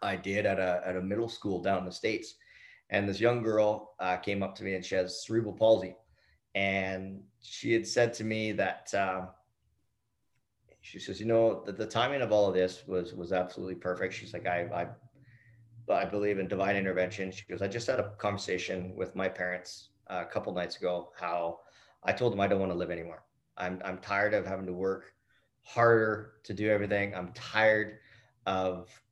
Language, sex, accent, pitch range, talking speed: English, male, American, 95-115 Hz, 200 wpm